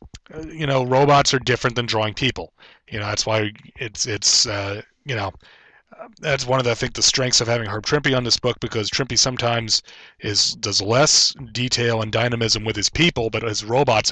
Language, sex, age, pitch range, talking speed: English, male, 30-49, 105-125 Hz, 200 wpm